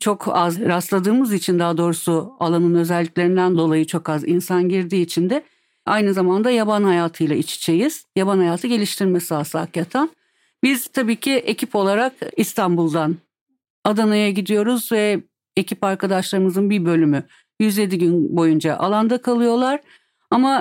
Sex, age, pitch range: female, 50-69, 170-225 Hz